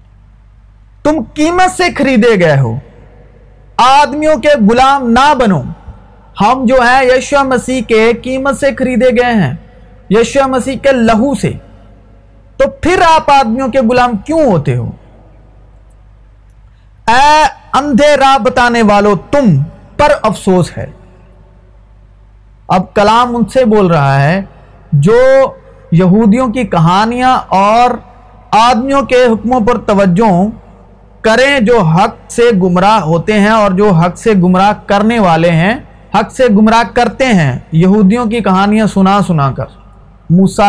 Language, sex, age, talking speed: Urdu, male, 50-69, 130 wpm